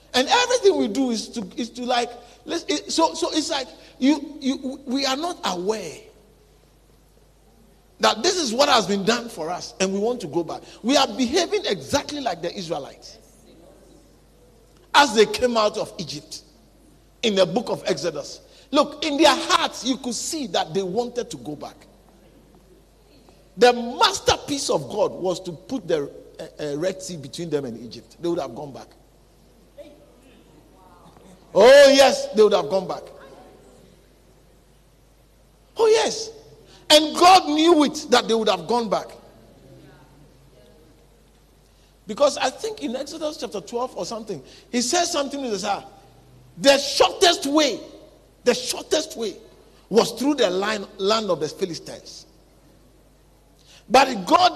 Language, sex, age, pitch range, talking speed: English, male, 50-69, 205-300 Hz, 150 wpm